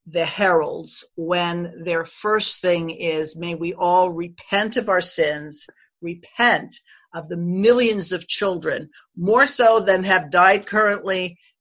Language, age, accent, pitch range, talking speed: English, 50-69, American, 180-230 Hz, 135 wpm